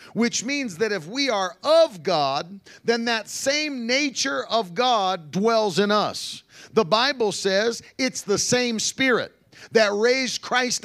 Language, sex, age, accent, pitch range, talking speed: English, male, 40-59, American, 195-250 Hz, 150 wpm